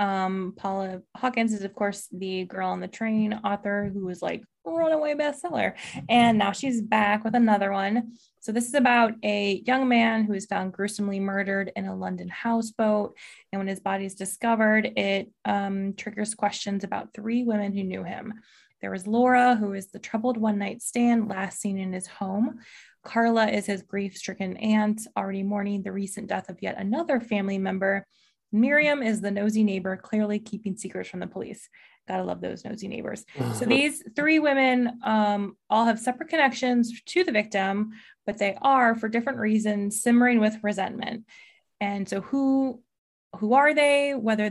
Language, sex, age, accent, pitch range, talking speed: English, female, 20-39, American, 195-230 Hz, 175 wpm